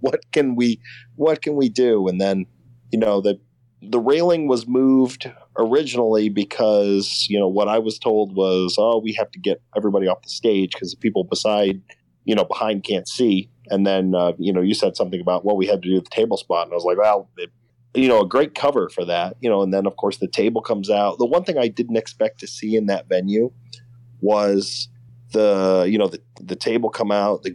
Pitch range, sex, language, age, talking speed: 95-120 Hz, male, English, 40-59, 225 wpm